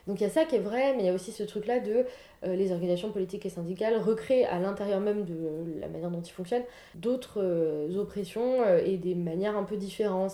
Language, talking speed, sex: French, 250 wpm, female